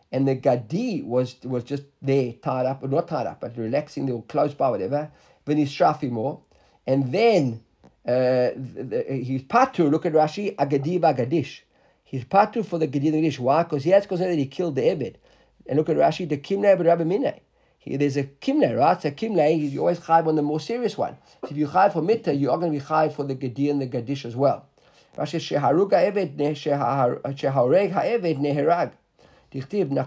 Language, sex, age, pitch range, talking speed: English, male, 50-69, 140-175 Hz, 210 wpm